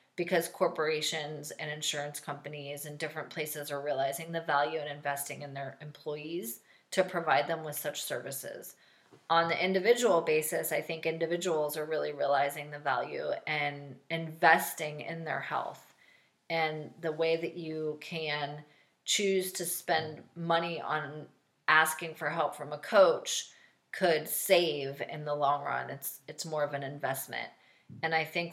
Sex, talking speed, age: female, 155 wpm, 30-49